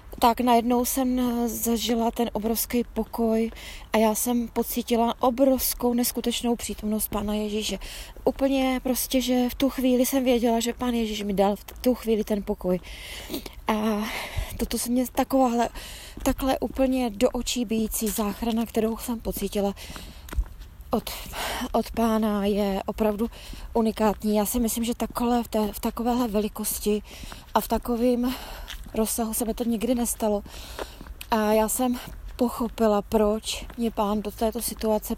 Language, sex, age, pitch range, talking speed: Czech, female, 20-39, 210-240 Hz, 135 wpm